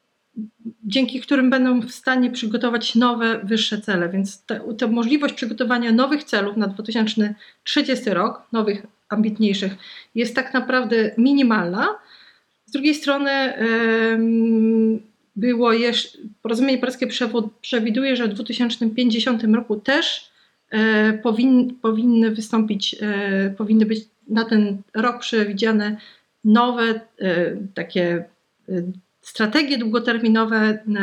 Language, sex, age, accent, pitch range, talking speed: Polish, female, 40-59, native, 215-250 Hz, 105 wpm